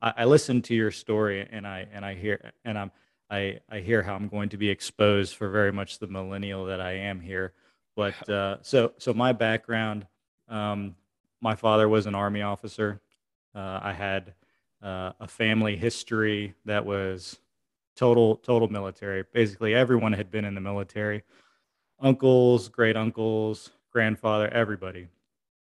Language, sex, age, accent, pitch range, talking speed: English, male, 20-39, American, 100-115 Hz, 155 wpm